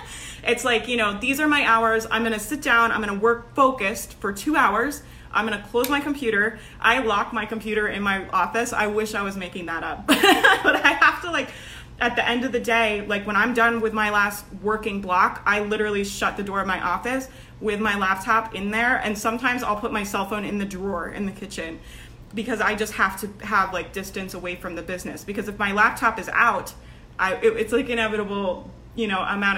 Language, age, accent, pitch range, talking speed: English, 20-39, American, 195-230 Hz, 225 wpm